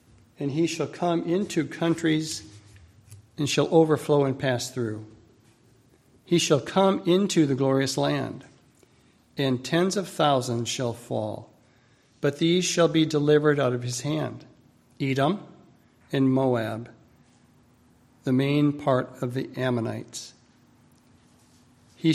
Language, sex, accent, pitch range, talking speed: English, male, American, 125-155 Hz, 120 wpm